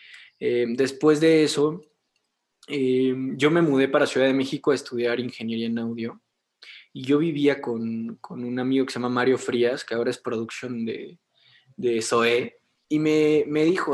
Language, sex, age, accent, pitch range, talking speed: Spanish, male, 20-39, Mexican, 125-150 Hz, 170 wpm